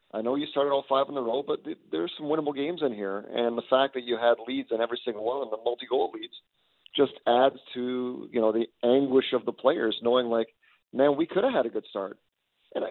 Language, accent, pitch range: English, American, 115-145 Hz